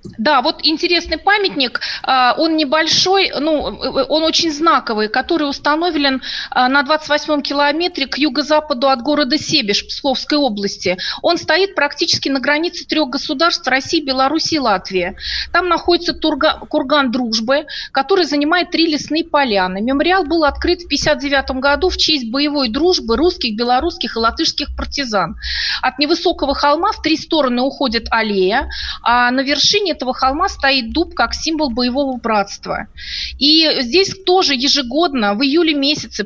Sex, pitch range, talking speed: female, 235-305 Hz, 135 wpm